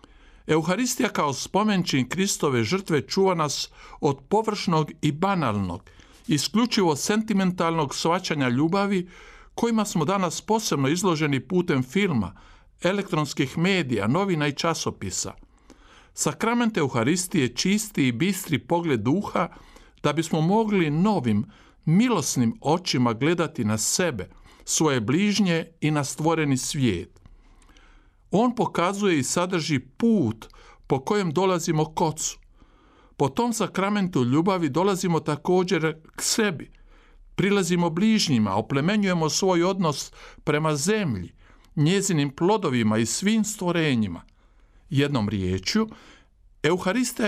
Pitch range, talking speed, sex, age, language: 130-190 Hz, 105 wpm, male, 50-69, Croatian